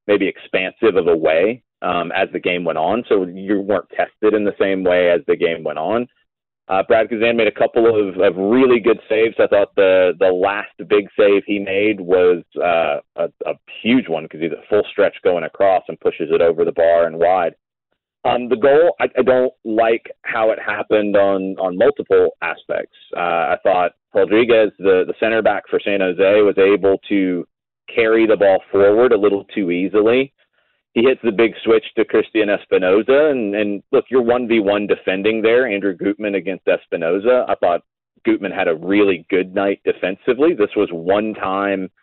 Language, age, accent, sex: English, 30-49, American, male